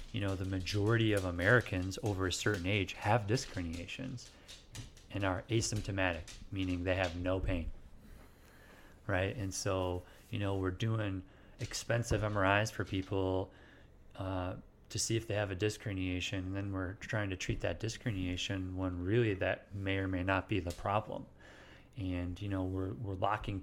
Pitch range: 95-120 Hz